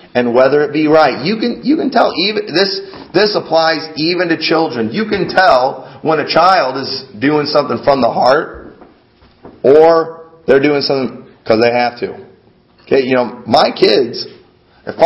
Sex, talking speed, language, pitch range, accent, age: male, 170 wpm, English, 130-170 Hz, American, 30-49